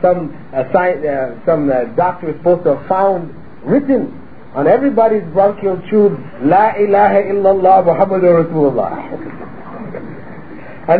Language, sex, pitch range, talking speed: English, male, 165-240 Hz, 120 wpm